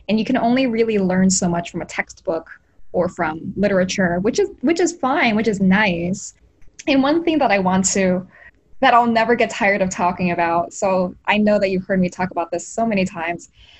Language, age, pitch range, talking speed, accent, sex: English, 10-29, 185-235 Hz, 220 wpm, American, female